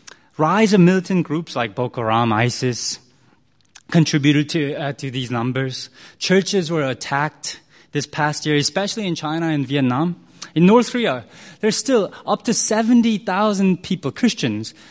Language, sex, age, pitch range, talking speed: English, male, 20-39, 135-195 Hz, 140 wpm